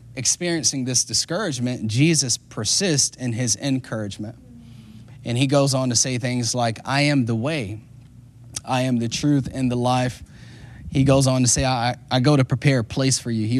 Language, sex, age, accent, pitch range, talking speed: English, male, 30-49, American, 120-135 Hz, 185 wpm